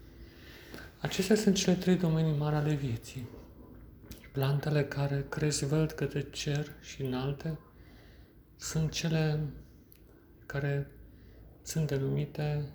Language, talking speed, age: Romanian, 100 wpm, 40-59